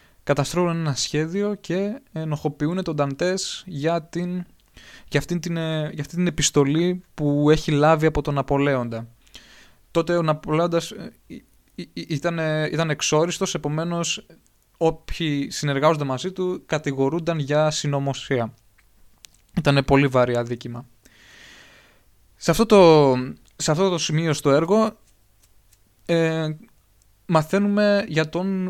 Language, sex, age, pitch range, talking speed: Greek, male, 20-39, 130-170 Hz, 105 wpm